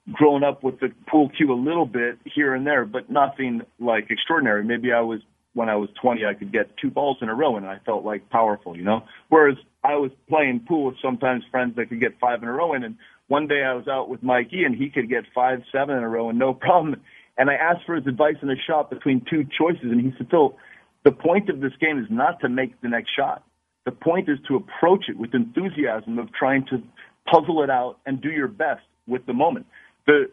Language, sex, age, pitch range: English, male, 40-59, 120-145 Hz